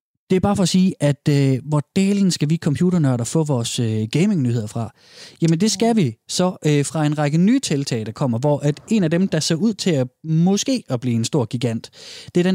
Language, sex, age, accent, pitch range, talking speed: Danish, male, 20-39, native, 130-170 Hz, 240 wpm